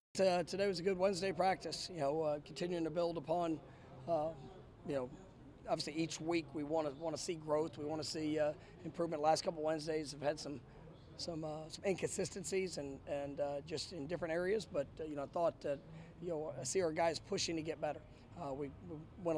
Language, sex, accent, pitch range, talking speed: English, male, American, 155-175 Hz, 210 wpm